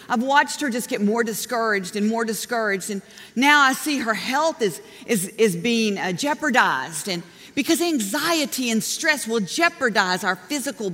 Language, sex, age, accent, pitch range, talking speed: English, female, 50-69, American, 205-295 Hz, 165 wpm